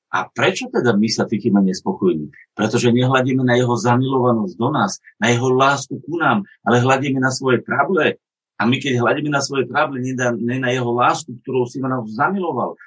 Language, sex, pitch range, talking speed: Slovak, male, 120-140 Hz, 190 wpm